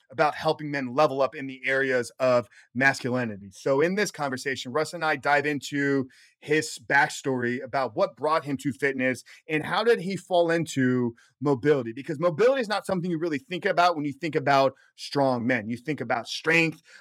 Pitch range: 125-155 Hz